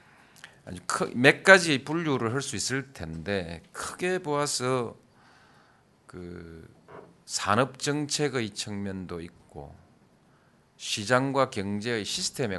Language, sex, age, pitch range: Korean, male, 40-59, 90-135 Hz